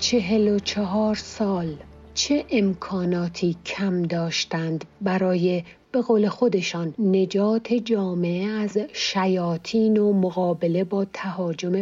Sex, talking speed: female, 100 wpm